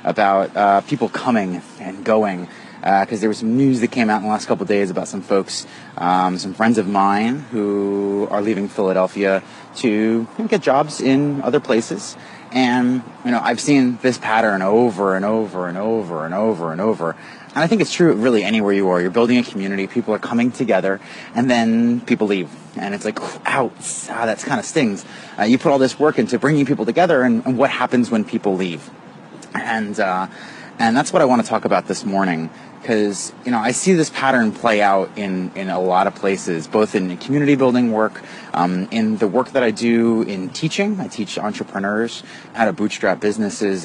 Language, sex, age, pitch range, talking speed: English, male, 30-49, 95-120 Hz, 205 wpm